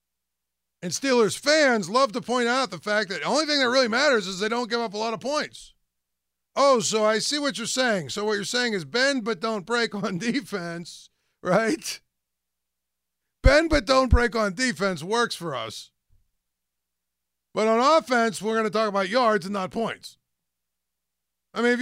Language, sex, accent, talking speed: English, male, American, 185 wpm